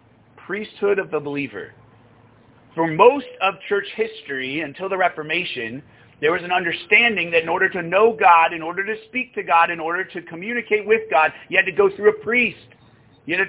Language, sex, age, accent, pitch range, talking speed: English, male, 40-59, American, 130-210 Hz, 195 wpm